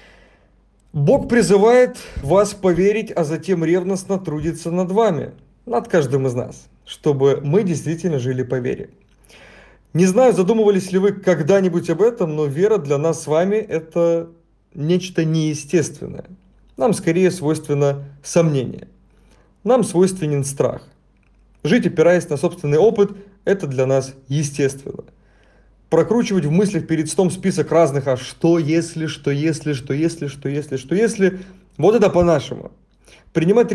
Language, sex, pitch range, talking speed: Russian, male, 150-190 Hz, 135 wpm